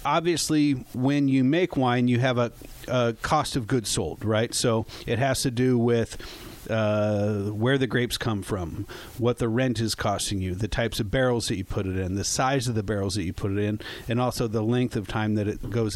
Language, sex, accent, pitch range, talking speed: English, male, American, 110-130 Hz, 225 wpm